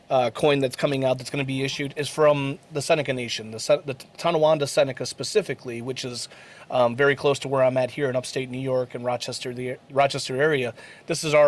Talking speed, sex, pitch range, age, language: 230 wpm, male, 130-155 Hz, 30-49, English